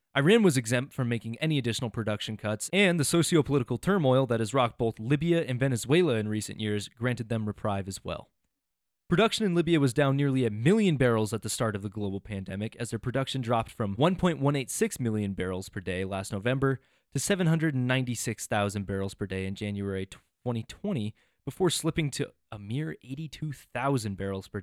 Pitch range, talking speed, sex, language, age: 105-150 Hz, 175 wpm, male, English, 20-39